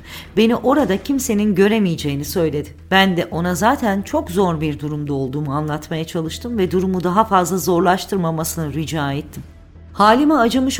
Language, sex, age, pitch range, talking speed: Turkish, female, 50-69, 160-210 Hz, 140 wpm